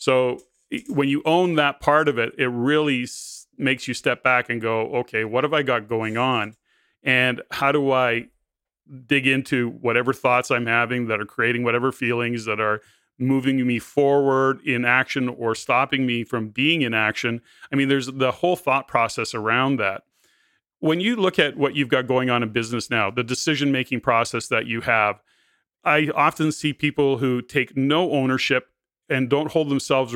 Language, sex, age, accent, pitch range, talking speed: English, male, 30-49, American, 120-140 Hz, 180 wpm